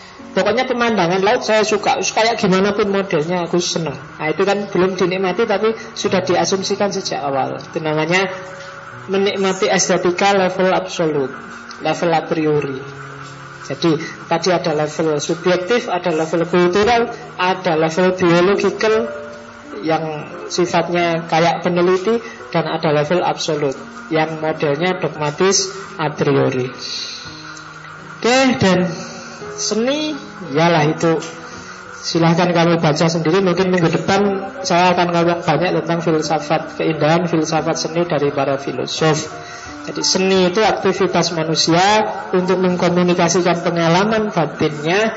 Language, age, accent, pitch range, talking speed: Indonesian, 20-39, native, 160-190 Hz, 115 wpm